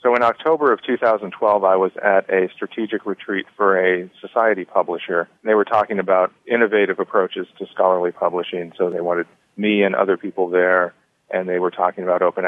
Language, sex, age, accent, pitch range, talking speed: English, male, 40-59, American, 90-105 Hz, 185 wpm